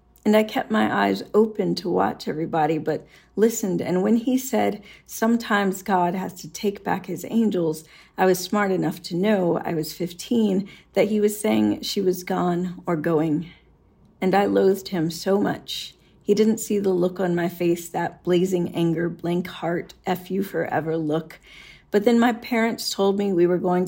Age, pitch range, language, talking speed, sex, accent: 40-59, 165-195 Hz, English, 185 wpm, female, American